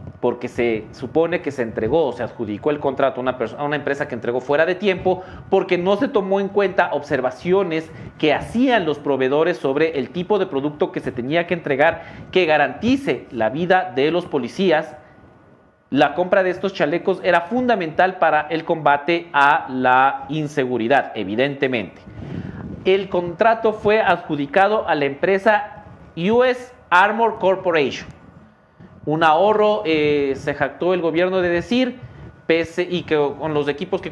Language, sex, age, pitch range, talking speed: English, male, 40-59, 140-190 Hz, 155 wpm